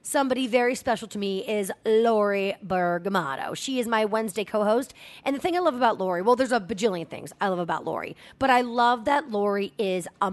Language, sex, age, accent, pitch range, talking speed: English, female, 30-49, American, 195-265 Hz, 210 wpm